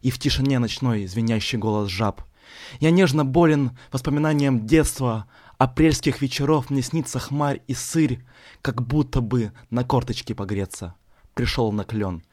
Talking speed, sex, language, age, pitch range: 135 wpm, male, Ukrainian, 20-39, 120-155 Hz